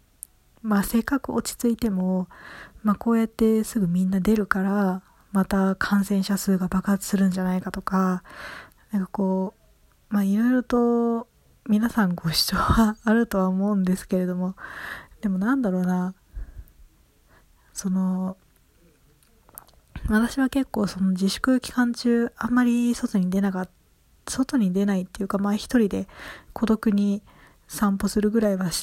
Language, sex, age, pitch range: Japanese, female, 20-39, 185-225 Hz